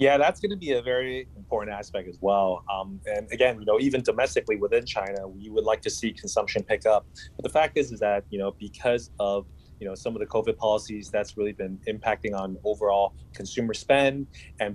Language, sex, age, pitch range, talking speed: English, male, 20-39, 95-125 Hz, 220 wpm